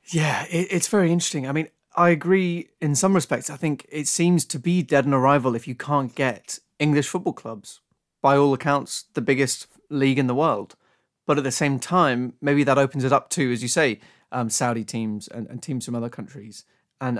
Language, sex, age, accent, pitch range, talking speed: English, male, 30-49, British, 125-155 Hz, 210 wpm